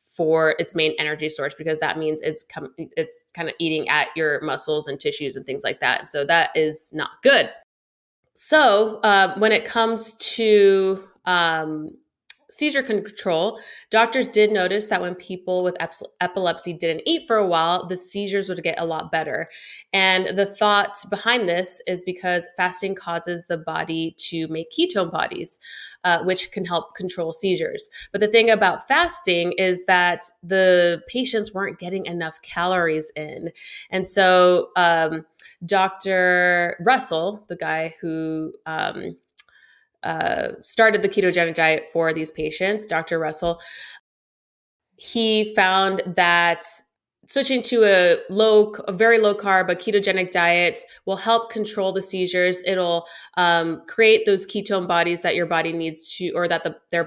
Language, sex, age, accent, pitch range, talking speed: English, female, 20-39, American, 165-205 Hz, 150 wpm